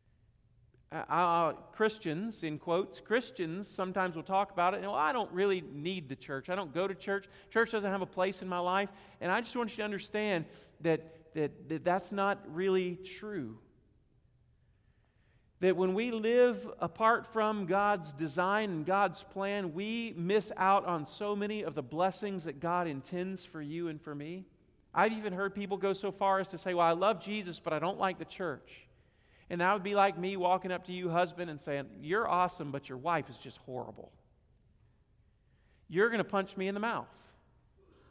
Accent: American